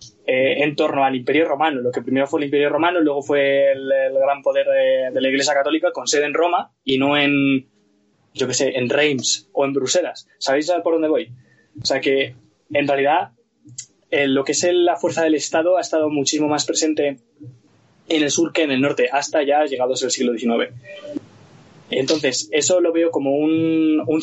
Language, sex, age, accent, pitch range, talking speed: Spanish, male, 20-39, Spanish, 130-165 Hz, 205 wpm